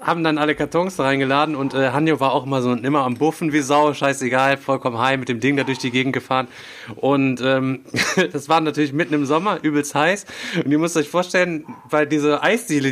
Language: German